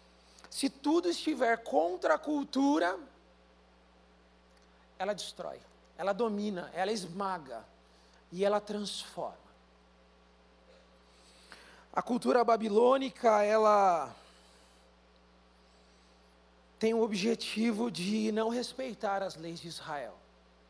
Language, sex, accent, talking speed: Portuguese, male, Brazilian, 85 wpm